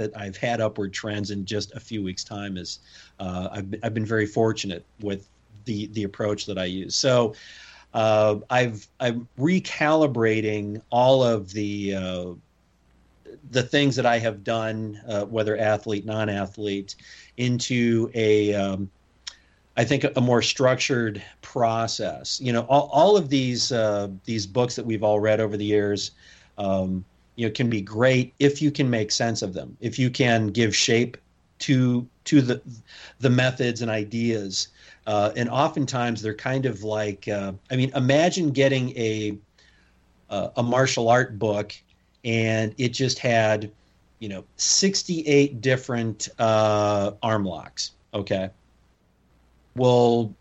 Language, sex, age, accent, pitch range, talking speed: English, male, 40-59, American, 105-125 Hz, 150 wpm